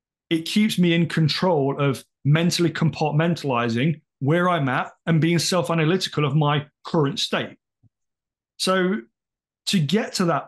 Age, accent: 30-49, British